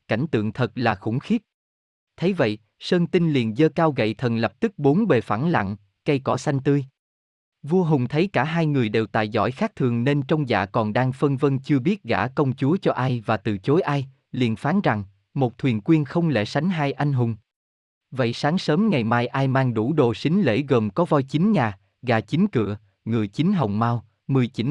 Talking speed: 220 wpm